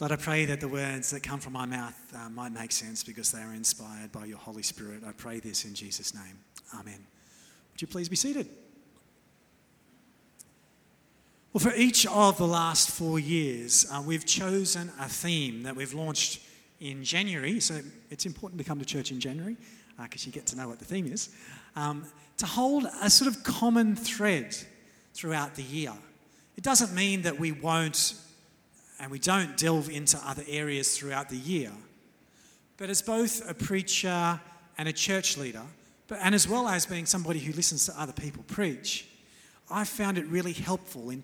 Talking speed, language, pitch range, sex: 185 wpm, English, 130-185 Hz, male